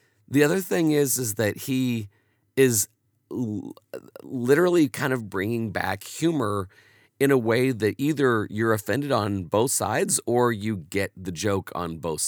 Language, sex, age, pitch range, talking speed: English, male, 40-59, 90-130 Hz, 155 wpm